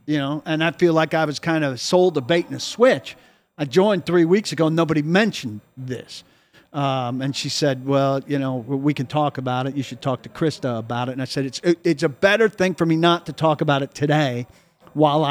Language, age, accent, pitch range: English, 50-69, American, 135-175 Hz